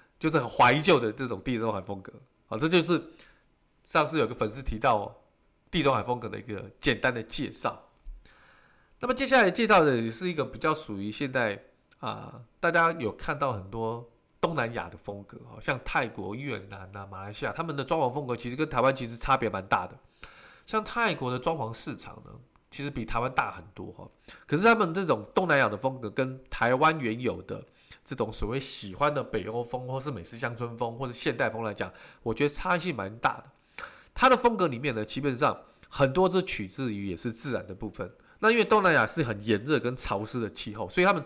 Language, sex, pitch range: Chinese, male, 110-160 Hz